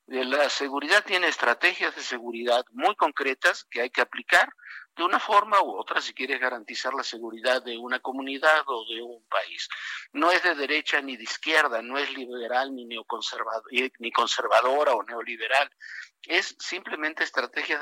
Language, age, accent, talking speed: Spanish, 50-69, Mexican, 160 wpm